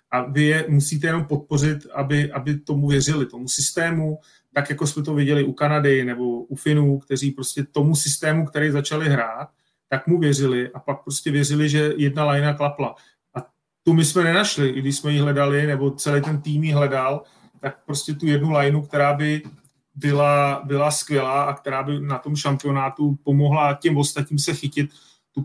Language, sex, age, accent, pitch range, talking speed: Czech, male, 30-49, native, 140-155 Hz, 185 wpm